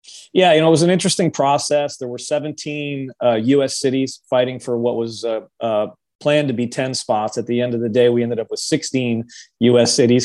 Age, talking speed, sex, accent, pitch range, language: 30-49, 225 wpm, male, American, 115-130 Hz, Spanish